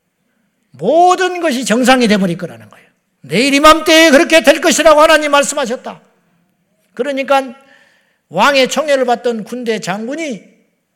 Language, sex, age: Korean, male, 50-69